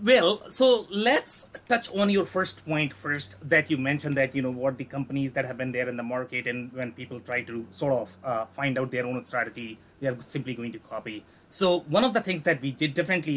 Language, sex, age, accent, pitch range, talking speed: English, male, 30-49, Indian, 130-185 Hz, 240 wpm